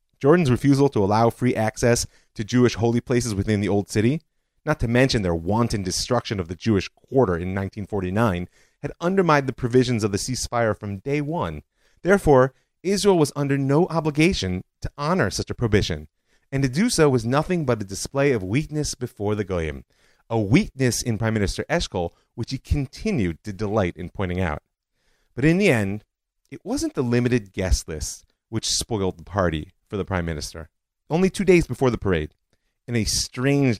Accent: American